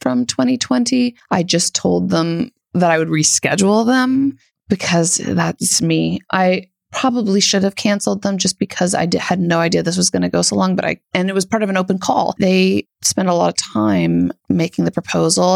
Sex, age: female, 30-49